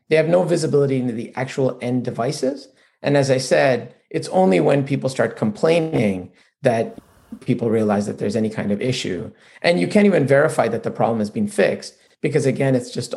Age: 40-59